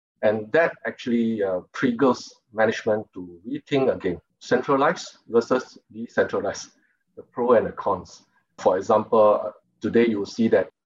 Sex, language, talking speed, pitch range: male, English, 135 wpm, 105-125 Hz